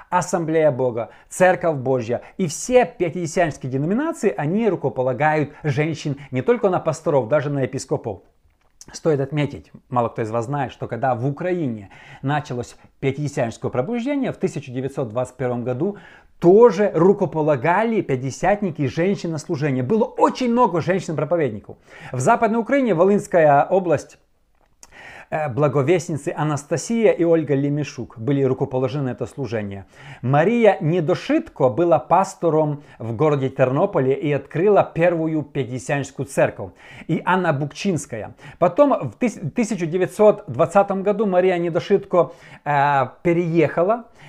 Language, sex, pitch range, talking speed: Russian, male, 135-185 Hz, 110 wpm